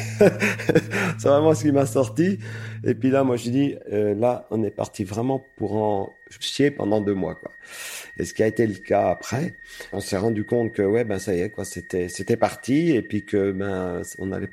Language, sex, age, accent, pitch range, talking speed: French, male, 40-59, French, 100-125 Hz, 220 wpm